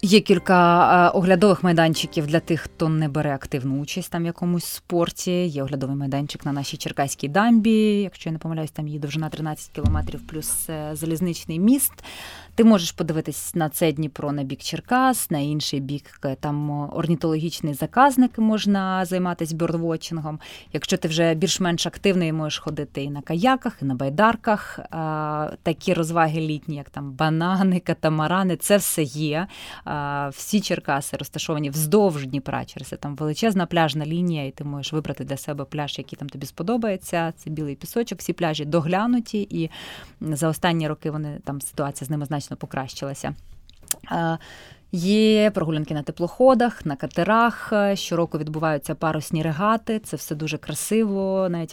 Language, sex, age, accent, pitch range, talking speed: Ukrainian, female, 20-39, native, 150-180 Hz, 150 wpm